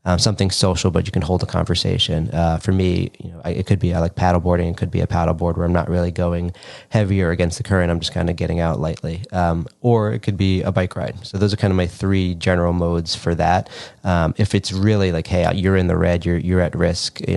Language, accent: English, American